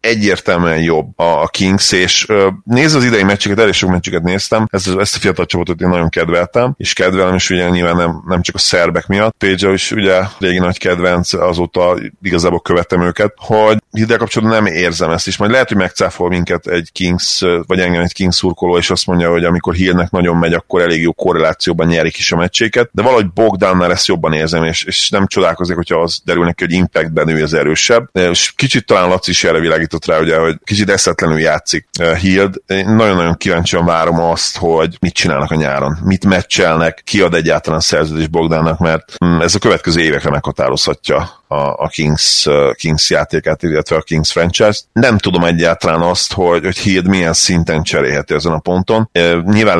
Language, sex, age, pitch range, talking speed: Hungarian, male, 30-49, 85-95 Hz, 180 wpm